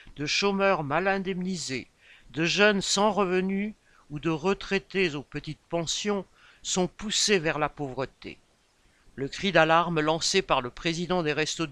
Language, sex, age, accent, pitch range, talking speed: French, male, 60-79, French, 145-195 Hz, 145 wpm